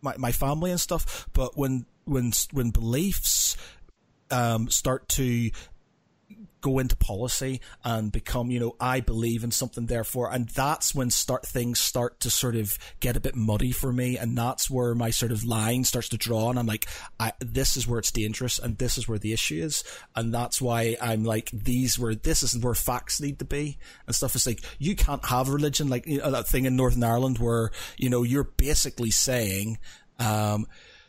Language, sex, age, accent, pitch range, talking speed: English, male, 30-49, British, 115-135 Hz, 200 wpm